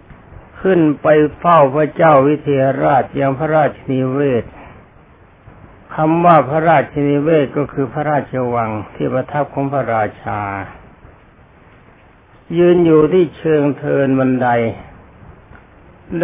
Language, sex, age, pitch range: Thai, male, 60-79, 120-155 Hz